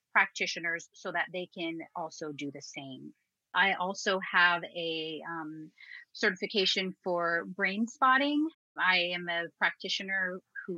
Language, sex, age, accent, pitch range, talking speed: English, female, 30-49, American, 175-235 Hz, 130 wpm